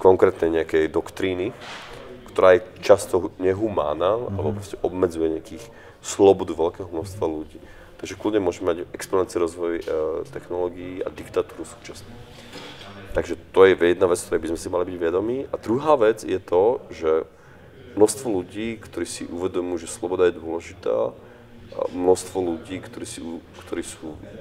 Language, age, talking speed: Slovak, 30-49, 145 wpm